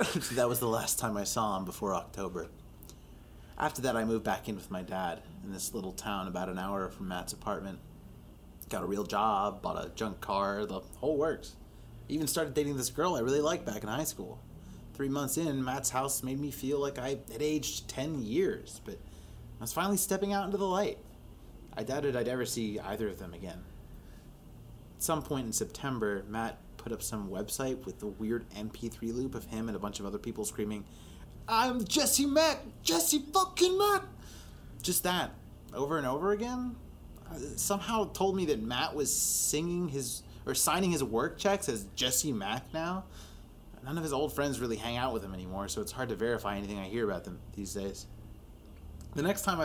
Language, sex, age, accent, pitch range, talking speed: English, male, 30-49, American, 105-155 Hz, 200 wpm